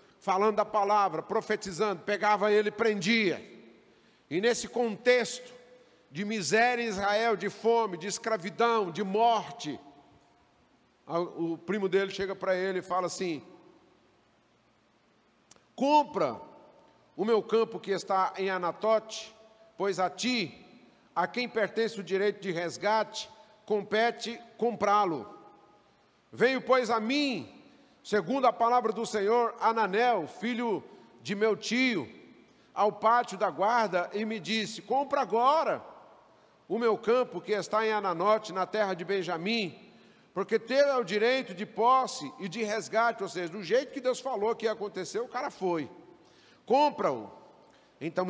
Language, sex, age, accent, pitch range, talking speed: Portuguese, male, 50-69, Brazilian, 200-240 Hz, 135 wpm